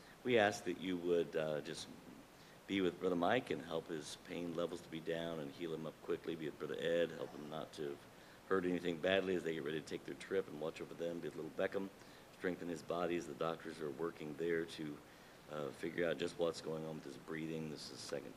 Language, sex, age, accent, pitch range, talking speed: English, male, 50-69, American, 75-90 Hz, 245 wpm